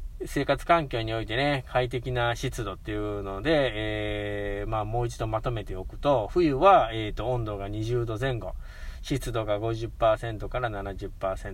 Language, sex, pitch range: Japanese, male, 100-140 Hz